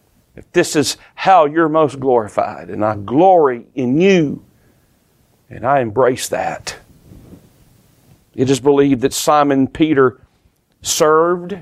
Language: English